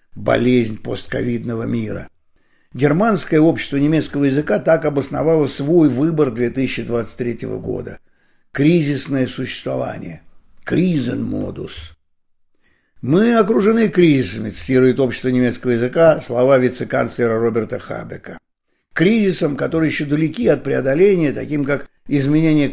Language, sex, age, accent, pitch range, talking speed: Russian, male, 60-79, native, 125-160 Hz, 100 wpm